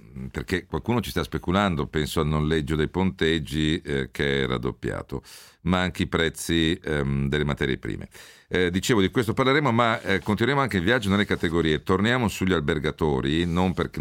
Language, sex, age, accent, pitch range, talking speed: Italian, male, 50-69, native, 75-95 Hz, 170 wpm